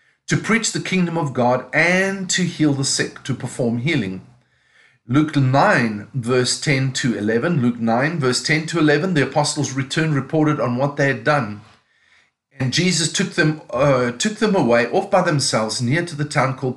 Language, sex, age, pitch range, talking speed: English, male, 50-69, 125-170 Hz, 175 wpm